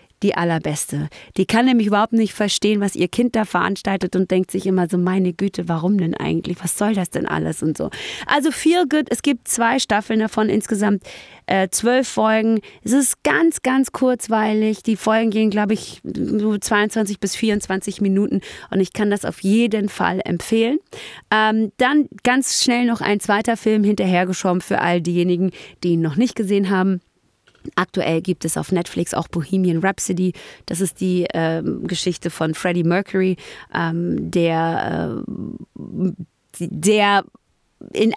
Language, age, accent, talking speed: German, 30-49, German, 165 wpm